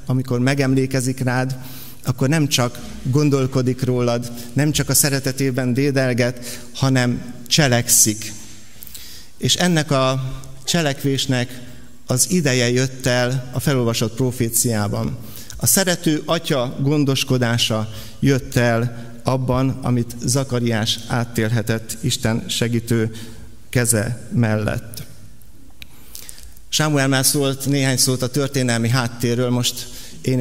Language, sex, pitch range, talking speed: Hungarian, male, 115-130 Hz, 95 wpm